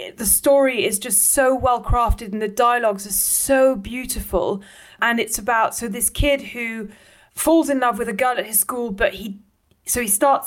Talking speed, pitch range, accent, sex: 190 wpm, 200-245 Hz, British, female